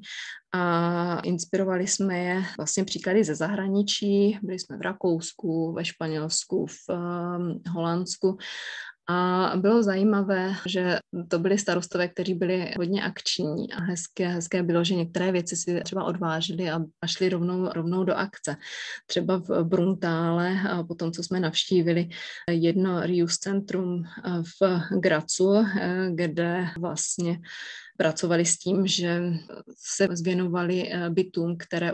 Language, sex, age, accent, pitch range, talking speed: Czech, female, 20-39, native, 170-185 Hz, 125 wpm